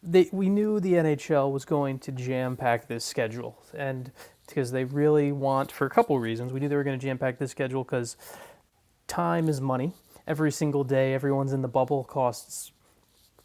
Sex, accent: male, American